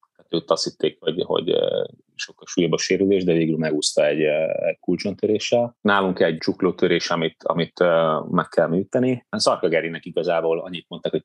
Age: 30-49